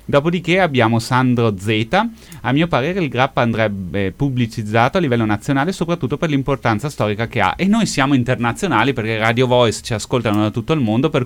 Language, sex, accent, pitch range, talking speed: Italian, male, native, 110-140 Hz, 180 wpm